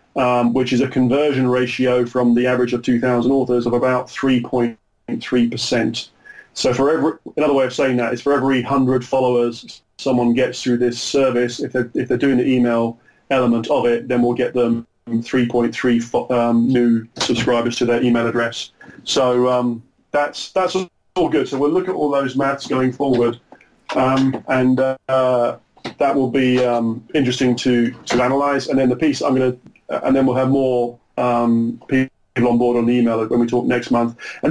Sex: male